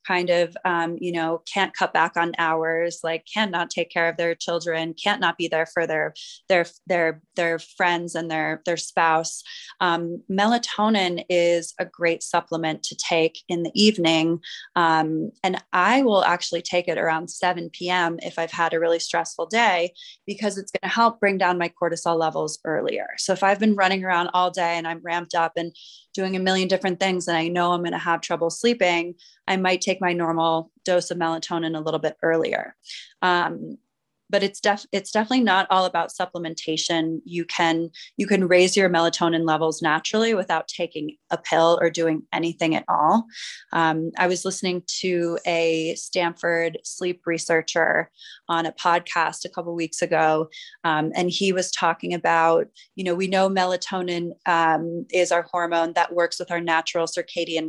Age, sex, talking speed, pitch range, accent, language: 20-39, female, 180 wpm, 165-185 Hz, American, English